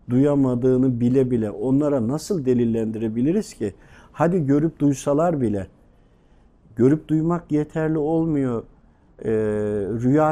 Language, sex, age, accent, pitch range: Japanese, male, 50-69, Turkish, 120-165 Hz